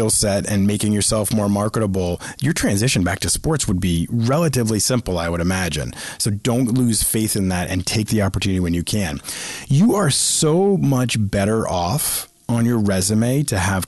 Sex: male